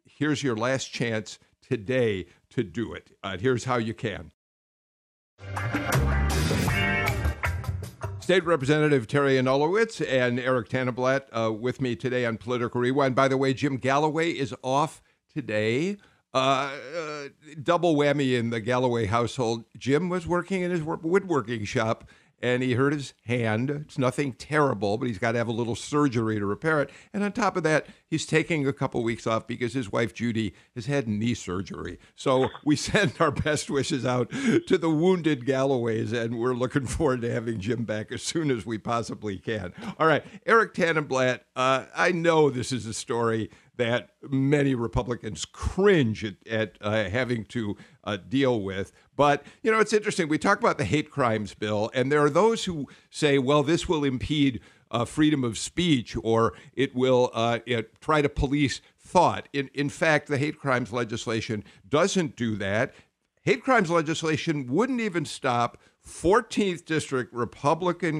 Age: 50-69